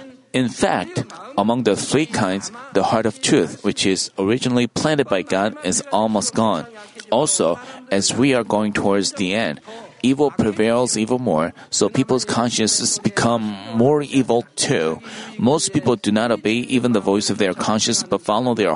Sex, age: male, 30-49